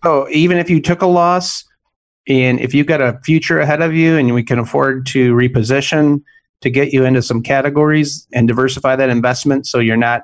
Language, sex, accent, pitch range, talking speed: English, male, American, 125-140 Hz, 205 wpm